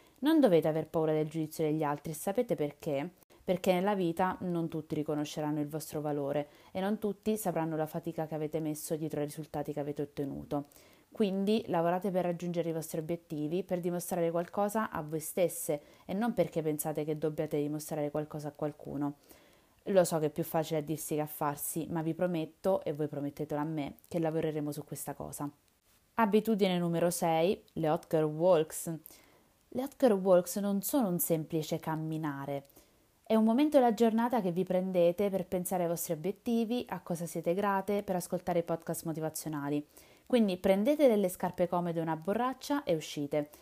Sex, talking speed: female, 175 wpm